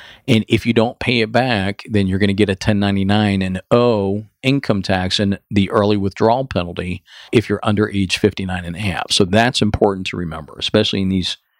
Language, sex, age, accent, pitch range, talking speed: English, male, 50-69, American, 95-110 Hz, 200 wpm